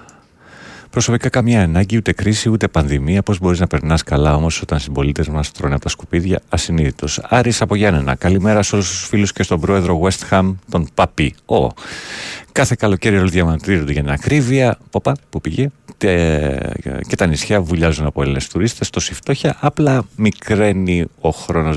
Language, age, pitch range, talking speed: Greek, 40-59, 80-105 Hz, 165 wpm